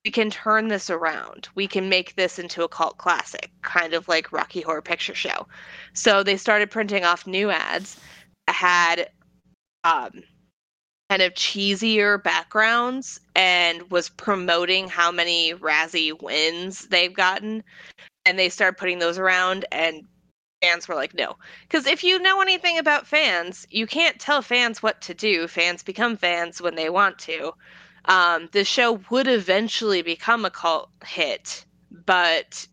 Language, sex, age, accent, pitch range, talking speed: English, female, 20-39, American, 175-230 Hz, 155 wpm